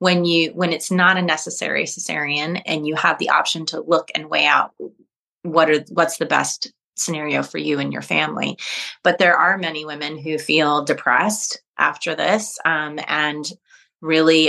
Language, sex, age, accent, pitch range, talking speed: English, female, 30-49, American, 155-180 Hz, 175 wpm